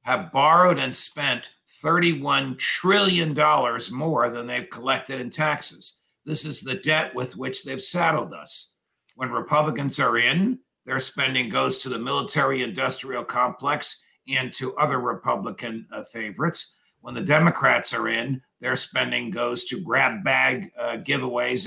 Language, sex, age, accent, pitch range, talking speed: English, male, 50-69, American, 130-175 Hz, 140 wpm